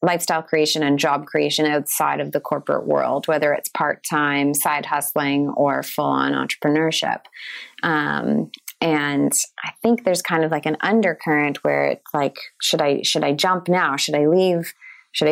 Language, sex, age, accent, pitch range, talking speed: English, female, 30-49, American, 150-175 Hz, 160 wpm